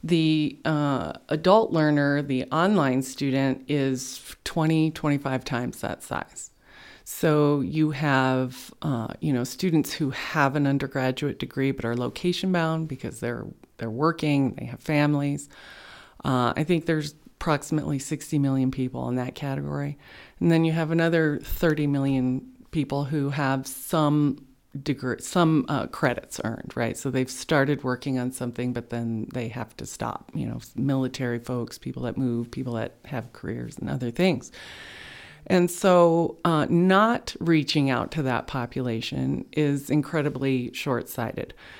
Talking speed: 145 wpm